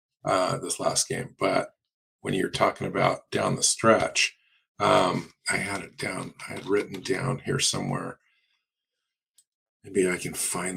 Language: English